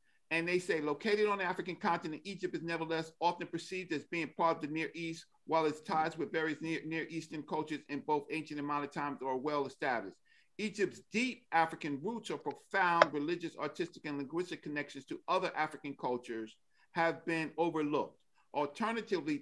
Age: 50-69